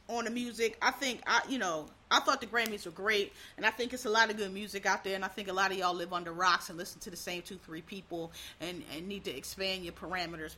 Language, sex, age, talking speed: English, female, 30-49, 285 wpm